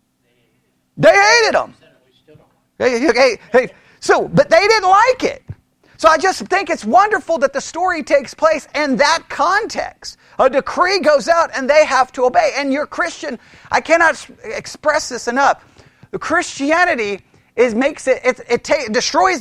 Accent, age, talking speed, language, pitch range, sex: American, 40-59, 160 wpm, English, 235-325 Hz, male